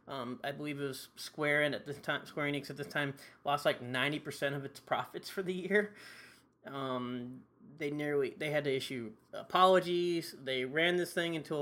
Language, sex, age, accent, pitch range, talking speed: English, male, 30-49, American, 130-155 Hz, 190 wpm